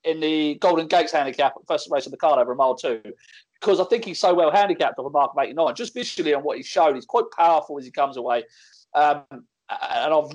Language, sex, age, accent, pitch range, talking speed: English, male, 30-49, British, 145-205 Hz, 255 wpm